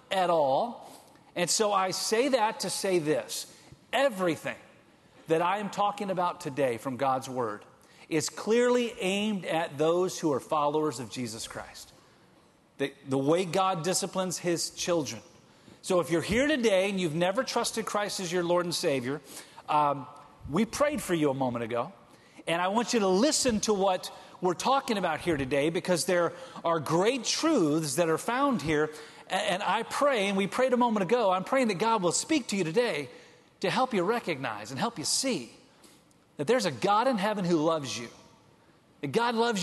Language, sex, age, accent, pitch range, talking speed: English, male, 40-59, American, 160-220 Hz, 185 wpm